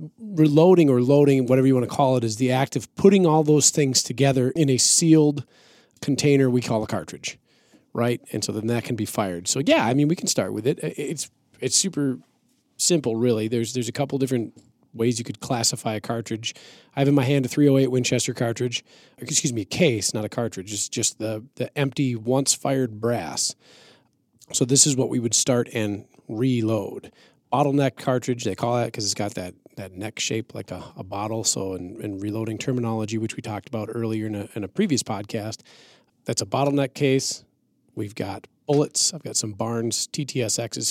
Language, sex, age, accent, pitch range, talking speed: English, male, 40-59, American, 110-140 Hz, 195 wpm